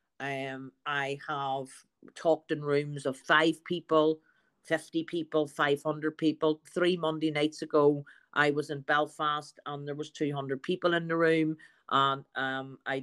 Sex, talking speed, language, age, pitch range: female, 155 wpm, English, 50-69, 145-180 Hz